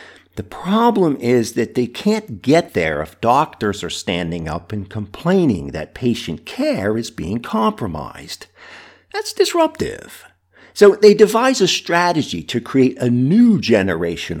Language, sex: English, male